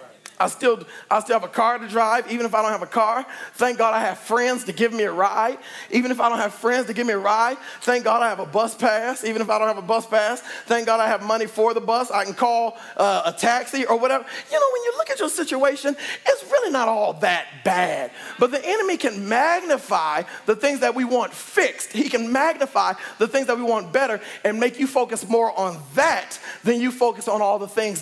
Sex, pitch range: male, 210-255 Hz